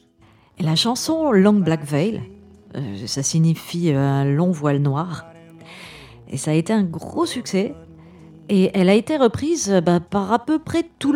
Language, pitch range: French, 160-210 Hz